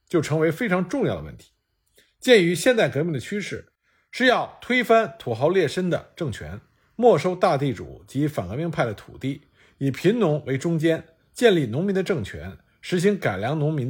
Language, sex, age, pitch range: Chinese, male, 50-69, 120-185 Hz